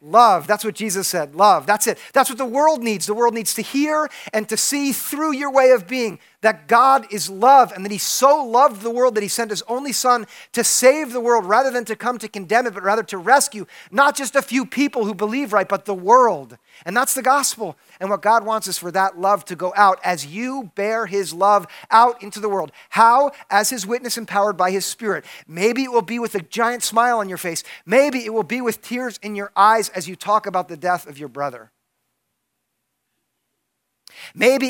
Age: 40-59